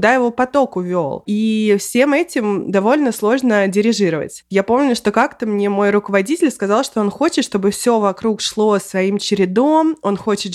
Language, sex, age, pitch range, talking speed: Russian, female, 20-39, 205-250 Hz, 160 wpm